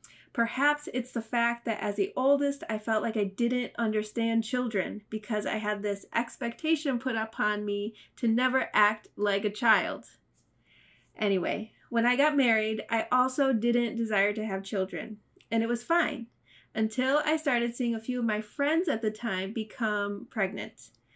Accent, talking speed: American, 165 wpm